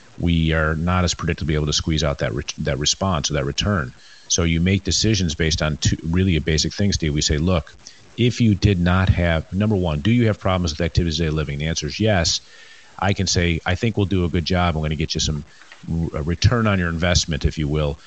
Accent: American